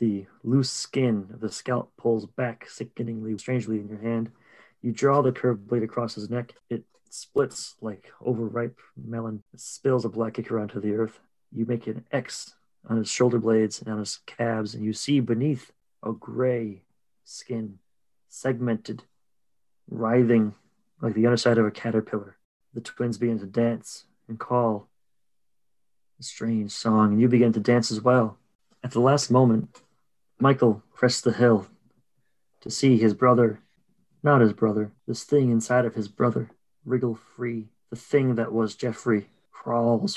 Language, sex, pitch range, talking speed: English, male, 110-120 Hz, 160 wpm